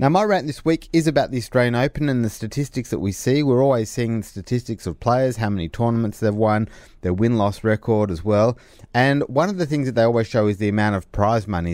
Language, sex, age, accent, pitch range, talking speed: English, male, 30-49, Australian, 90-115 Hz, 245 wpm